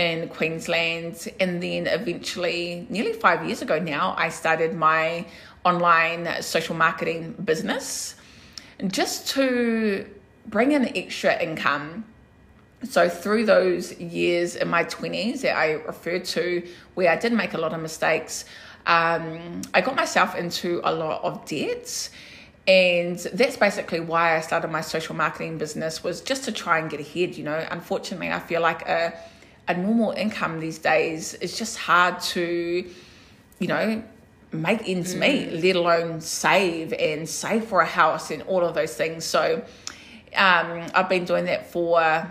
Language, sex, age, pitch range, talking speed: English, female, 20-39, 160-185 Hz, 155 wpm